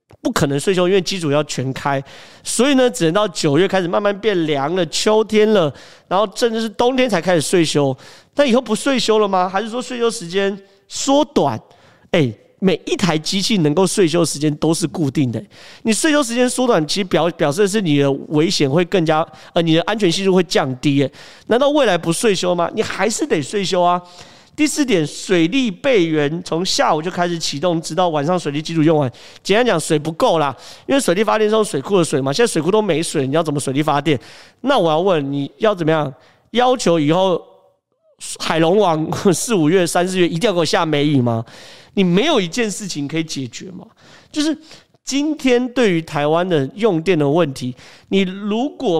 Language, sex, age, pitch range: Chinese, male, 40-59, 155-215 Hz